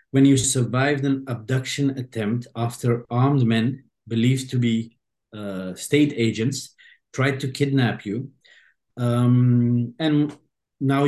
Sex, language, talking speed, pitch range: male, English, 120 wpm, 120-140 Hz